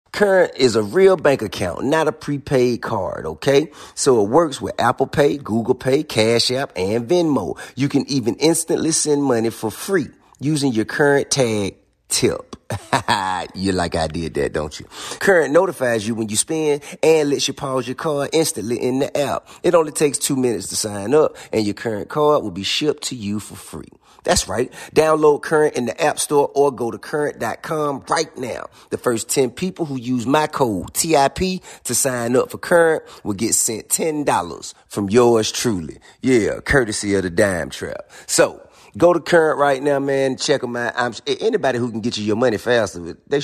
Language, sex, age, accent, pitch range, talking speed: English, male, 30-49, American, 110-150 Hz, 190 wpm